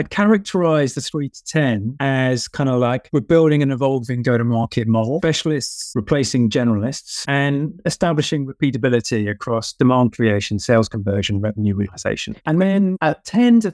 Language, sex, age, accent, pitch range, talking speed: English, male, 30-49, British, 115-155 Hz, 155 wpm